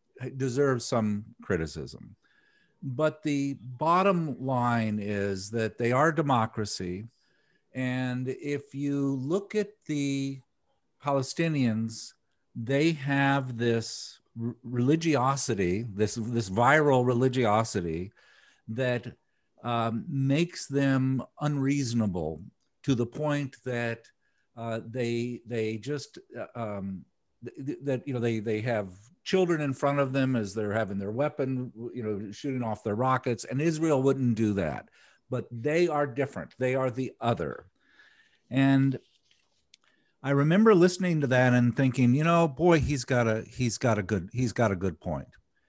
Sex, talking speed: male, 135 wpm